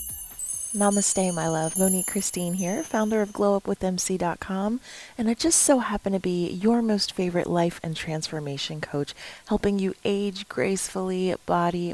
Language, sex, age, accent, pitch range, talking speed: English, female, 30-49, American, 155-185 Hz, 140 wpm